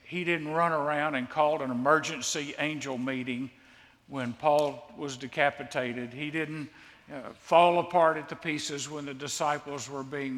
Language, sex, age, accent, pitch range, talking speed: English, male, 50-69, American, 125-150 Hz, 155 wpm